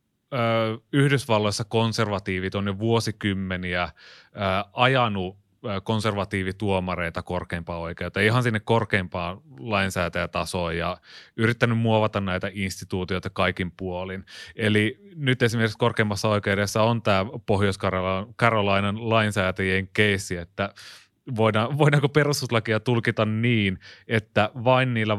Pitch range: 95-115 Hz